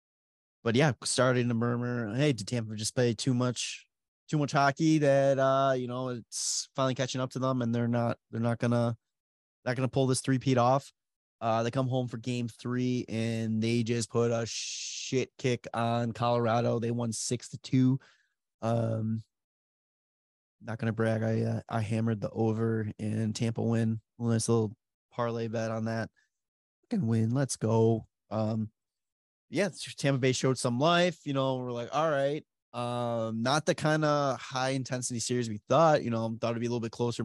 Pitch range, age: 115-135 Hz, 20-39